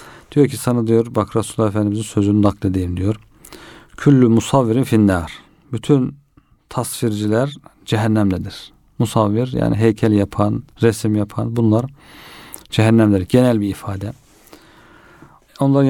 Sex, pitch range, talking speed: male, 105-130 Hz, 105 wpm